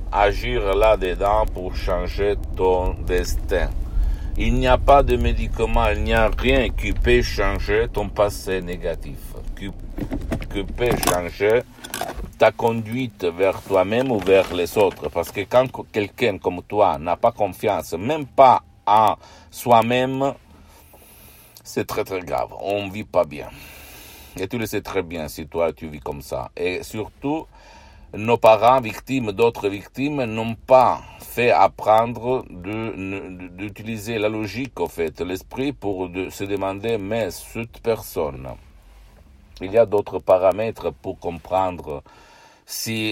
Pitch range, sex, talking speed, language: 90-110 Hz, male, 140 wpm, Italian